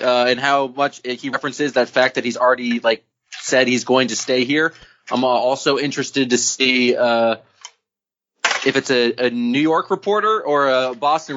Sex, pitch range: male, 125-150 Hz